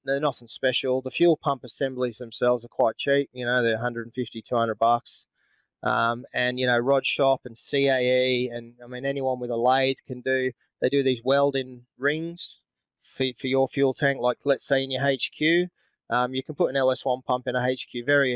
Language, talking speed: English, 205 wpm